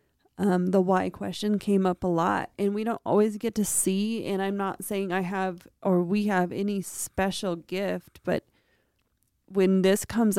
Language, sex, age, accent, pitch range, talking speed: English, female, 30-49, American, 195-230 Hz, 180 wpm